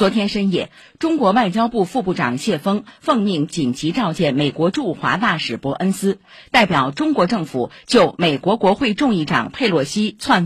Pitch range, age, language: 175-260 Hz, 50-69, Chinese